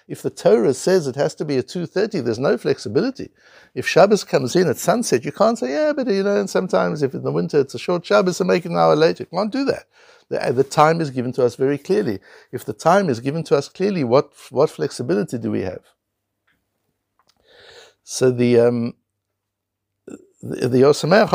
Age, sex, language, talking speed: 60-79, male, English, 205 wpm